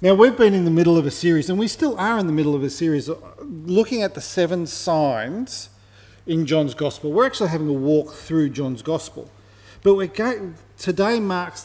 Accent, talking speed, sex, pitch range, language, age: Australian, 205 wpm, male, 135-180 Hz, English, 40-59